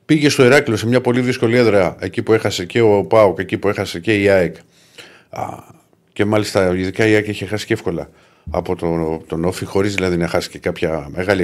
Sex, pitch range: male, 100-135 Hz